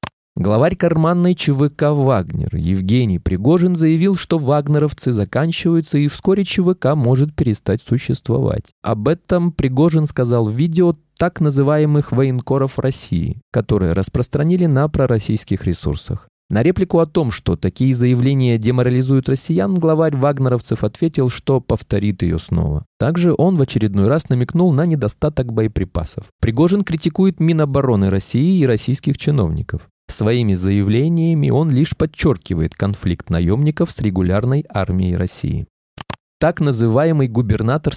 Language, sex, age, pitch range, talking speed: Russian, male, 20-39, 105-155 Hz, 120 wpm